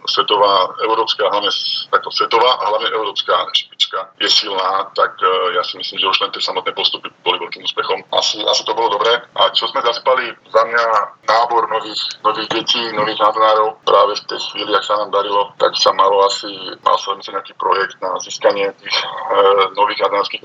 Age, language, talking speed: 20-39, Slovak, 190 wpm